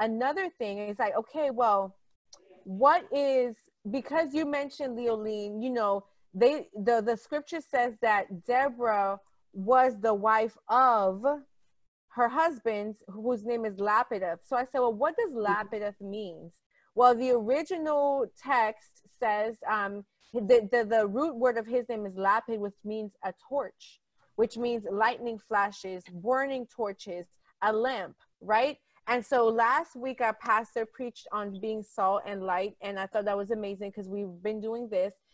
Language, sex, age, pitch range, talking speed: English, female, 30-49, 205-255 Hz, 155 wpm